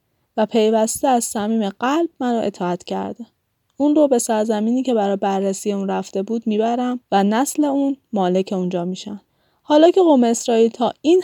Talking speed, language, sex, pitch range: 170 wpm, Persian, female, 195-255 Hz